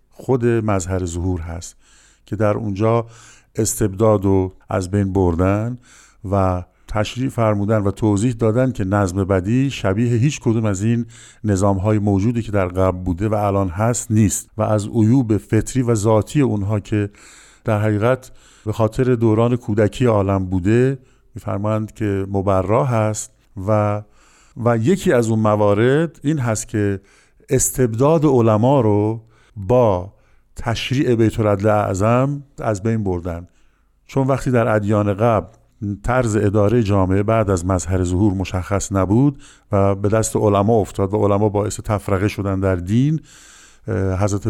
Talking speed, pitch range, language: 140 wpm, 100-120 Hz, Persian